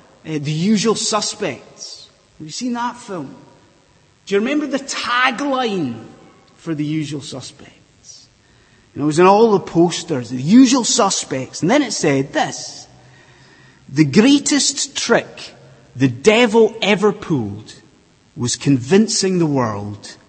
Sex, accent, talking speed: male, British, 130 wpm